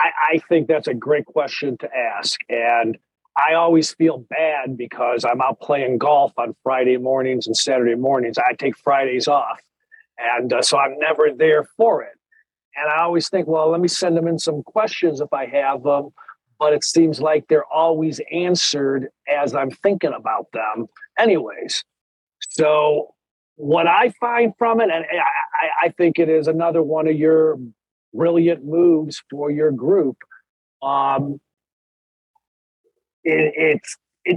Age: 50-69